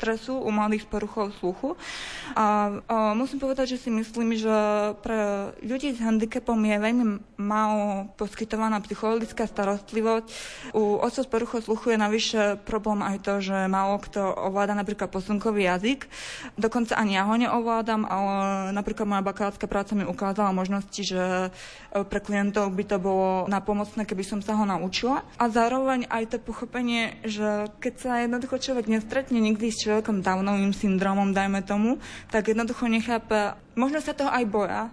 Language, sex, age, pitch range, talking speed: Slovak, female, 20-39, 205-235 Hz, 150 wpm